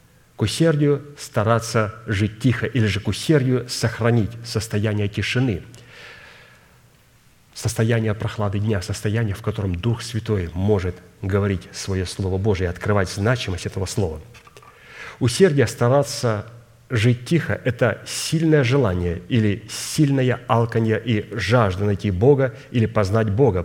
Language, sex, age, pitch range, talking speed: Russian, male, 40-59, 105-125 Hz, 120 wpm